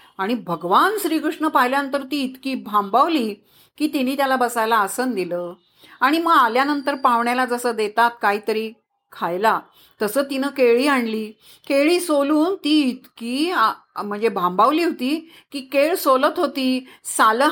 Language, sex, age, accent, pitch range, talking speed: Marathi, female, 40-59, native, 225-290 Hz, 125 wpm